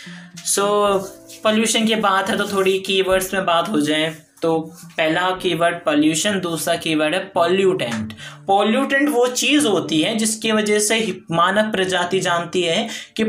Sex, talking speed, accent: male, 145 wpm, native